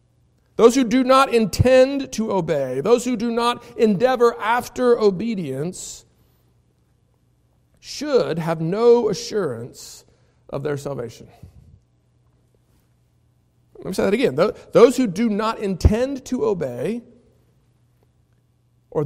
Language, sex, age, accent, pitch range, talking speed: English, male, 50-69, American, 165-235 Hz, 105 wpm